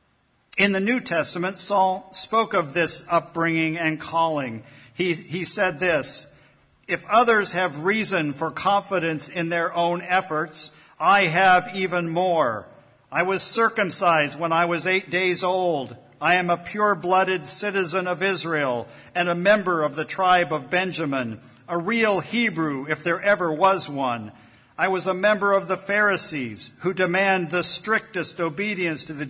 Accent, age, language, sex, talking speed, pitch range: American, 50-69, English, male, 155 wpm, 155-190 Hz